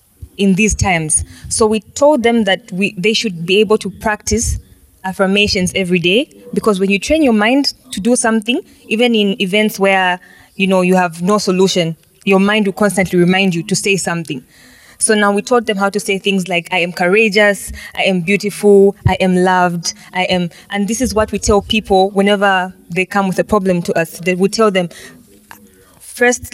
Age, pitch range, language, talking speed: 20-39, 185-220 Hz, English, 195 wpm